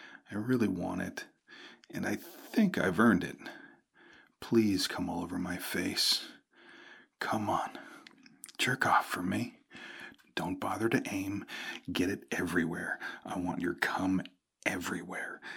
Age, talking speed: 40-59, 130 wpm